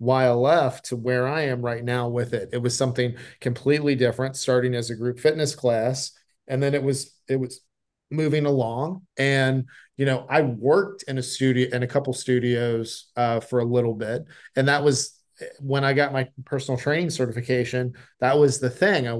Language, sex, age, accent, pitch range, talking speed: English, male, 40-59, American, 125-150 Hz, 190 wpm